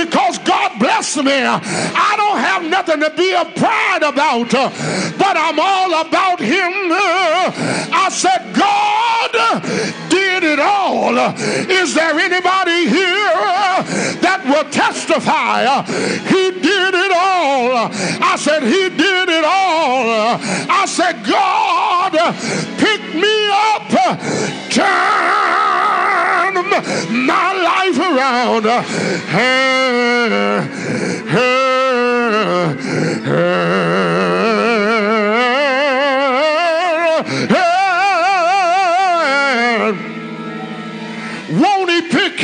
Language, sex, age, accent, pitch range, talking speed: English, male, 50-69, American, 245-370 Hz, 75 wpm